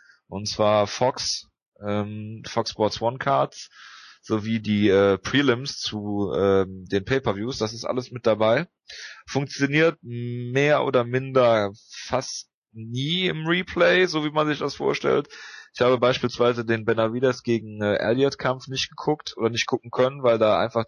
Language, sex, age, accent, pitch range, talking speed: German, male, 30-49, German, 105-130 Hz, 150 wpm